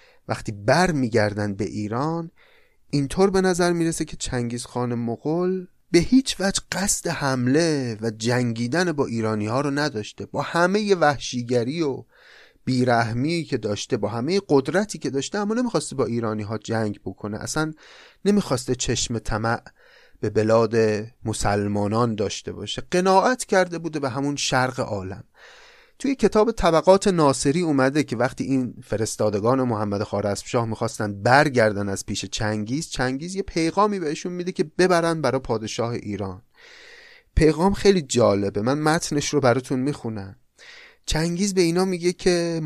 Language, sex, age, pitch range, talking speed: Persian, male, 30-49, 110-170 Hz, 140 wpm